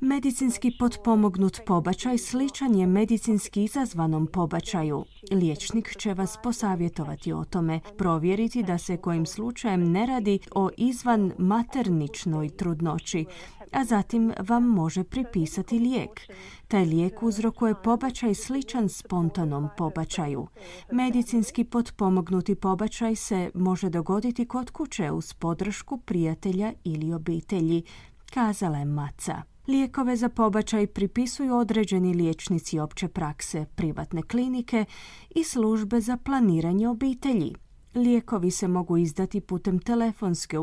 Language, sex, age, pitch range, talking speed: Croatian, female, 30-49, 170-235 Hz, 110 wpm